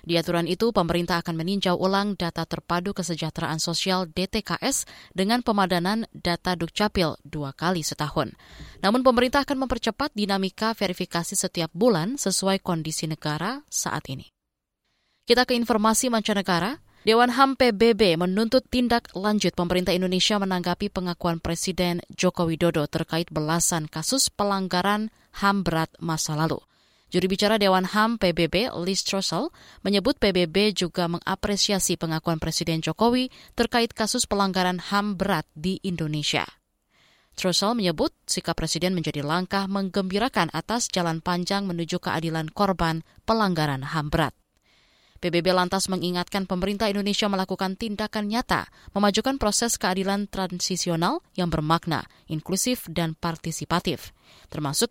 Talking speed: 120 wpm